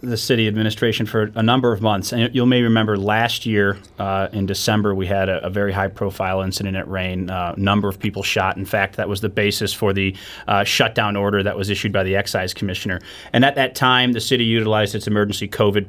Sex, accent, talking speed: male, American, 230 wpm